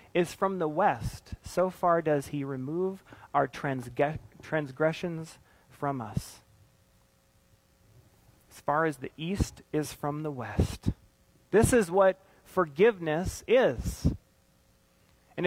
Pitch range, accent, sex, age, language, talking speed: 135-185 Hz, American, male, 30-49, English, 115 wpm